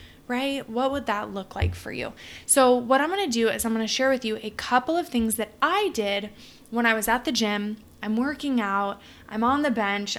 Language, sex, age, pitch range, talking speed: English, female, 20-39, 215-255 Hz, 230 wpm